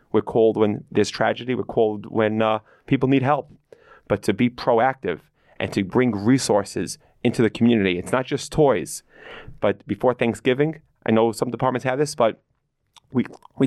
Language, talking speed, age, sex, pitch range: English, 170 wpm, 30-49, male, 100-120 Hz